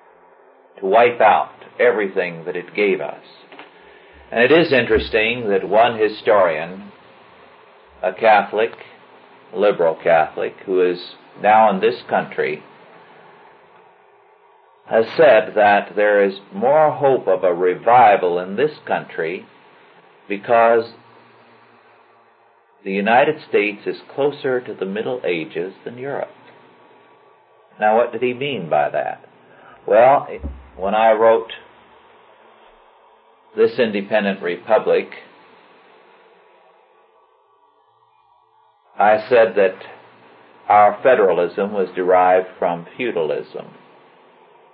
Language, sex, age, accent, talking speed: English, male, 50-69, American, 100 wpm